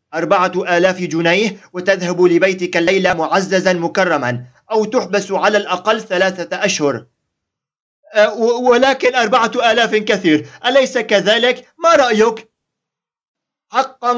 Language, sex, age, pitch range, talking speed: Arabic, male, 40-59, 130-190 Hz, 95 wpm